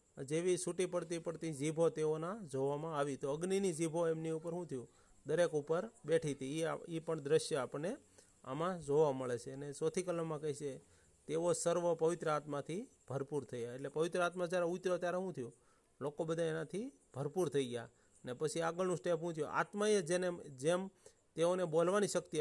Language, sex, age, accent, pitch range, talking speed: Gujarati, male, 40-59, native, 145-185 Hz, 145 wpm